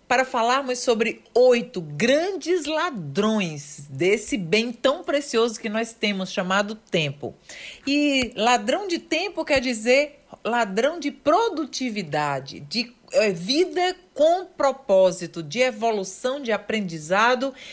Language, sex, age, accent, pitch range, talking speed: Portuguese, female, 40-59, Brazilian, 200-275 Hz, 110 wpm